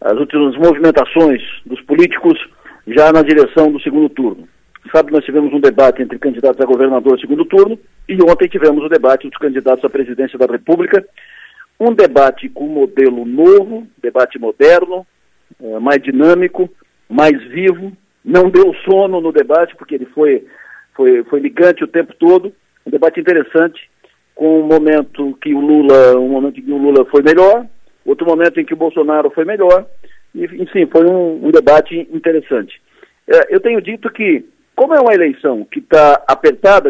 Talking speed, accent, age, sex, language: 165 wpm, Brazilian, 50-69, male, Portuguese